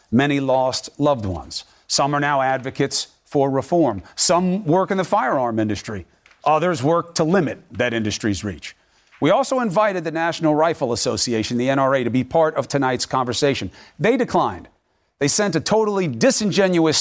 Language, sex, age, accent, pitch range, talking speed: English, male, 40-59, American, 125-175 Hz, 160 wpm